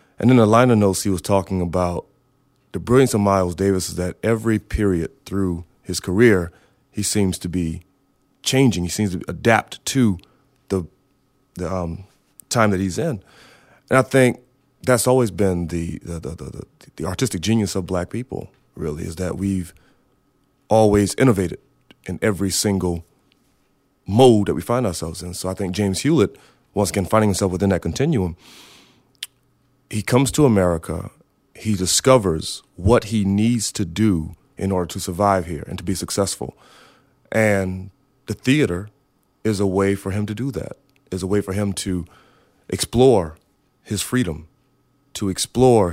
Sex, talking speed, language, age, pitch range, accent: male, 160 wpm, English, 30-49, 95-115 Hz, American